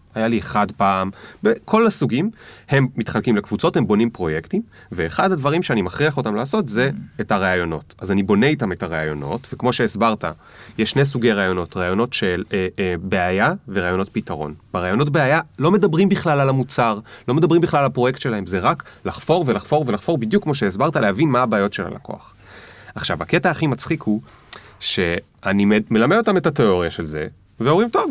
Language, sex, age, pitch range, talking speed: Hebrew, male, 30-49, 100-150 Hz, 170 wpm